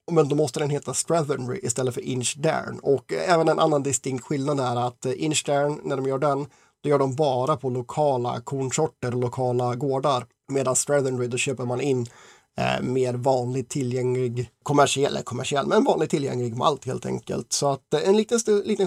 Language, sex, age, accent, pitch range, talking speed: Swedish, male, 30-49, native, 125-150 Hz, 180 wpm